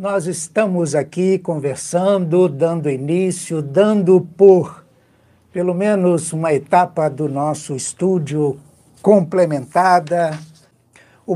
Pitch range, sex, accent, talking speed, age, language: 155-185 Hz, male, Brazilian, 90 wpm, 60-79, Portuguese